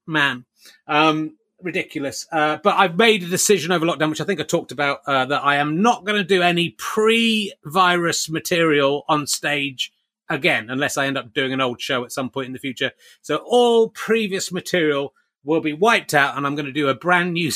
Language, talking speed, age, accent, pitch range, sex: English, 210 wpm, 30-49, British, 140-200 Hz, male